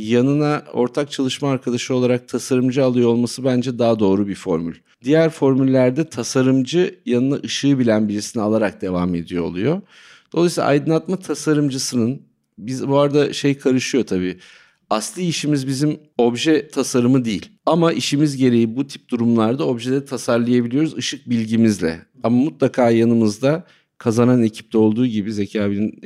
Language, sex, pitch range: Turkish, male, 115-140 Hz